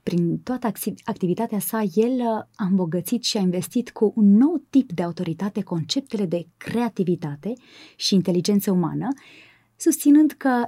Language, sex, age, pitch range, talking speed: Romanian, female, 20-39, 175-225 Hz, 135 wpm